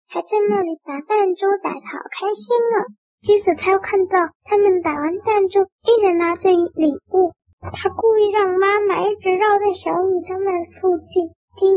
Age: 10-29